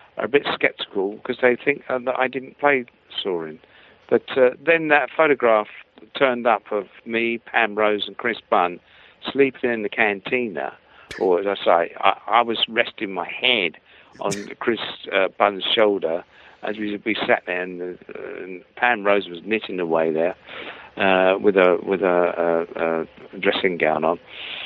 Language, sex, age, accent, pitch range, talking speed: English, male, 50-69, British, 100-135 Hz, 165 wpm